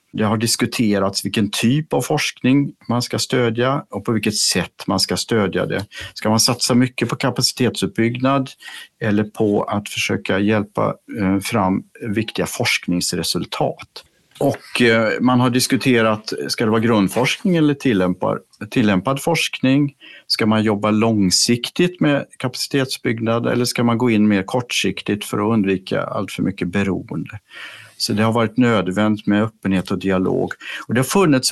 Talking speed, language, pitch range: 145 wpm, Swedish, 105-135 Hz